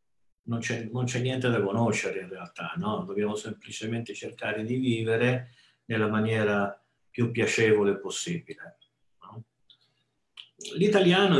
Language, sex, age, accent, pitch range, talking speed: Italian, male, 50-69, native, 105-125 Hz, 115 wpm